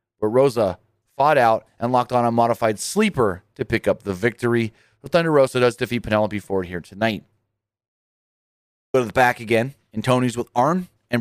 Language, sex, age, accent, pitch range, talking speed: English, male, 30-49, American, 110-125 Hz, 175 wpm